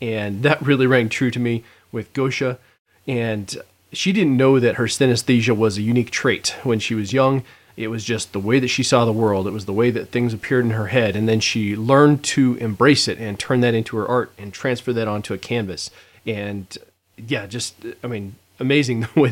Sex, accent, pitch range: male, American, 110-130 Hz